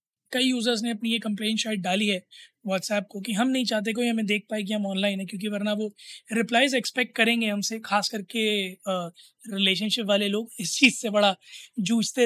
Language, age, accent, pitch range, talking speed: Hindi, 20-39, native, 210-245 Hz, 195 wpm